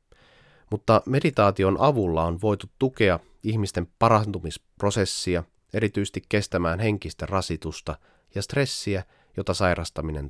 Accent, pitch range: native, 85-115 Hz